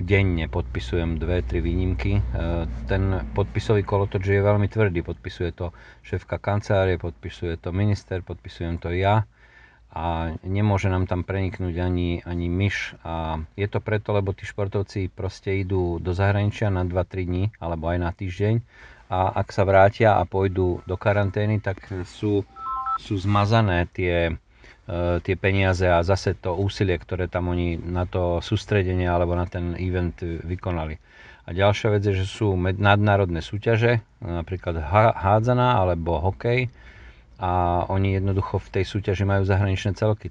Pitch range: 85-100 Hz